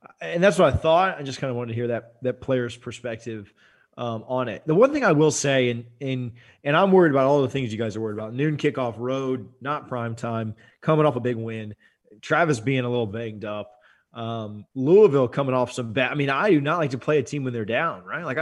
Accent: American